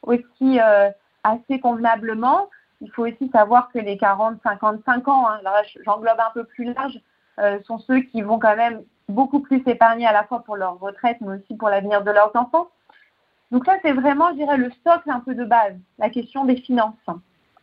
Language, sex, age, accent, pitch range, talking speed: French, female, 40-59, French, 225-290 Hz, 205 wpm